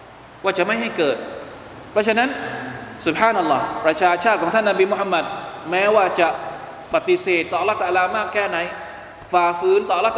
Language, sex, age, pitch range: Thai, male, 20-39, 180-280 Hz